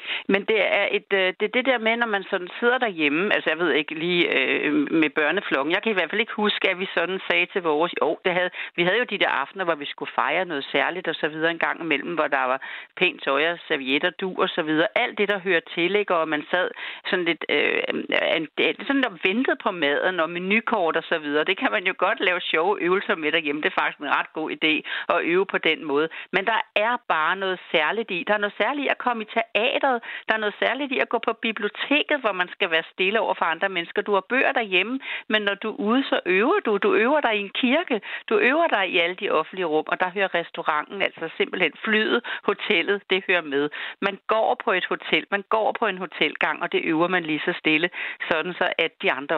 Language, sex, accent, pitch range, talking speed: Danish, female, native, 170-230 Hz, 240 wpm